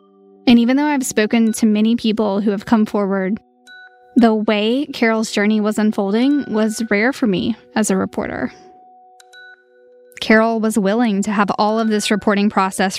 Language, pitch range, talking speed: English, 185-220 Hz, 160 wpm